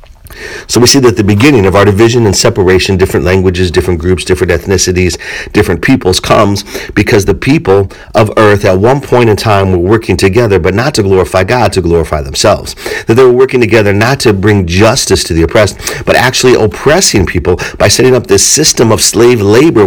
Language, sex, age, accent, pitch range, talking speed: English, male, 50-69, American, 95-120 Hz, 195 wpm